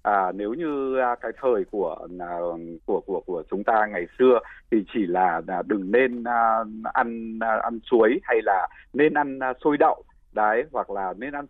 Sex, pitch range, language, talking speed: male, 105-160 Hz, Vietnamese, 165 wpm